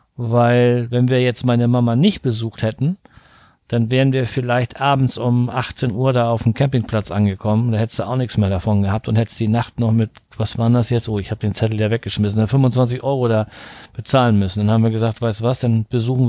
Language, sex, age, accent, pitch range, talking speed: German, male, 40-59, German, 115-145 Hz, 220 wpm